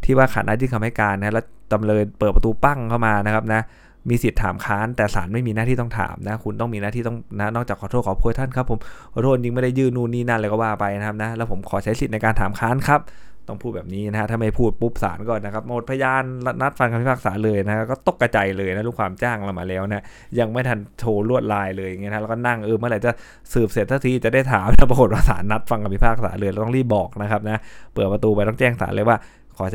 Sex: male